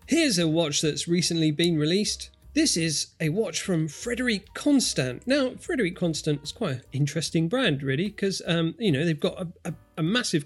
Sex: male